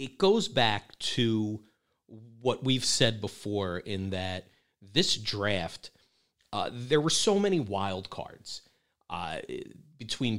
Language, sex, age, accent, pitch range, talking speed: English, male, 40-59, American, 110-185 Hz, 120 wpm